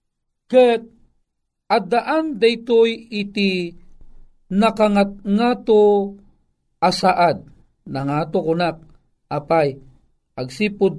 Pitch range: 165-205 Hz